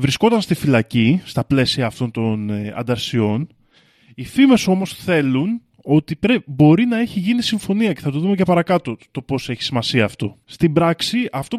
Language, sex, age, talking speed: Greek, male, 20-39, 165 wpm